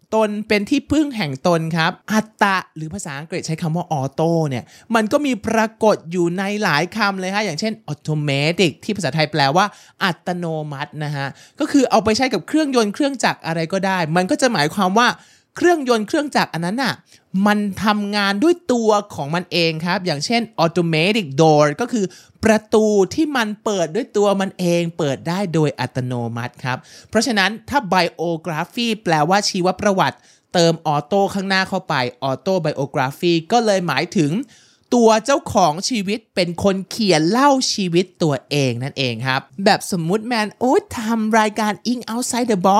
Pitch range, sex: 150-215 Hz, male